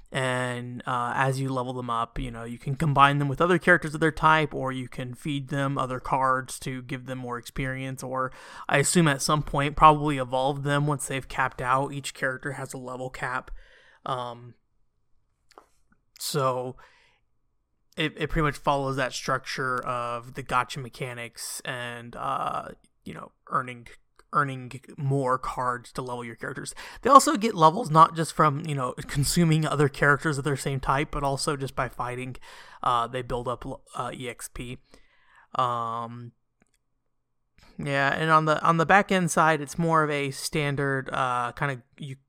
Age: 20-39